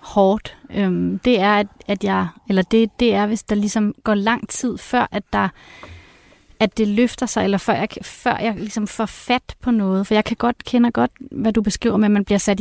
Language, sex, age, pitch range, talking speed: Danish, female, 30-49, 205-240 Hz, 225 wpm